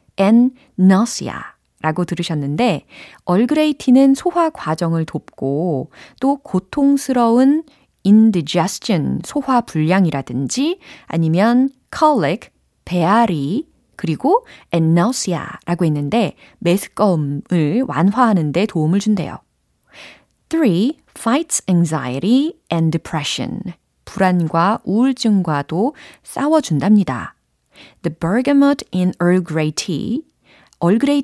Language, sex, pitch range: Korean, female, 165-250 Hz